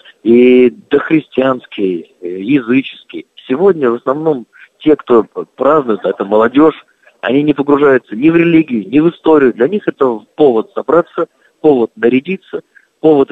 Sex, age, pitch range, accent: male, 50-69, 120-165 Hz, native